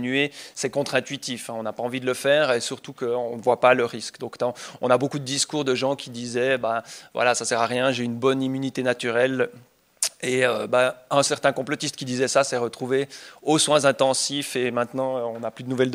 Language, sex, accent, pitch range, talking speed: French, male, French, 125-140 Hz, 225 wpm